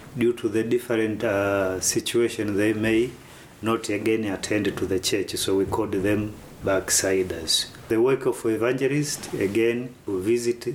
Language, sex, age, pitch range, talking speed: English, male, 40-59, 95-120 Hz, 145 wpm